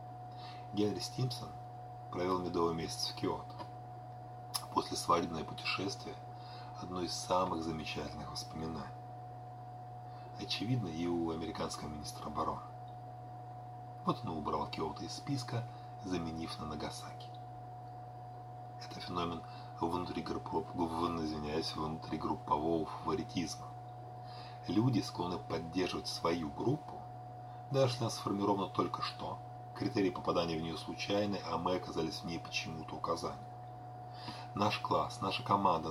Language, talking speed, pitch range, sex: Russian, 105 wpm, 100-120 Hz, male